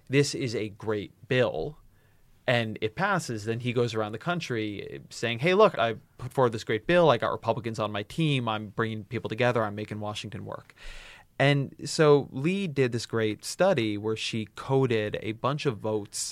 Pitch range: 105-130 Hz